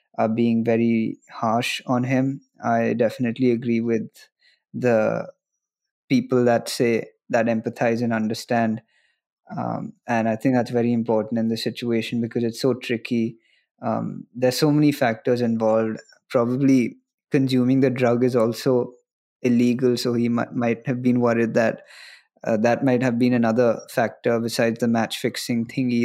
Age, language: 20-39, Hindi